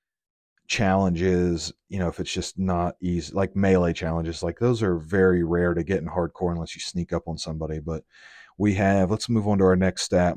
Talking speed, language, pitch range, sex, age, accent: 210 wpm, English, 90-110 Hz, male, 30-49, American